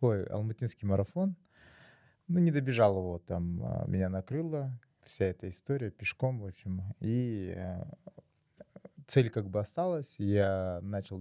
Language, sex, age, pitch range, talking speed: Russian, male, 20-39, 95-115 Hz, 130 wpm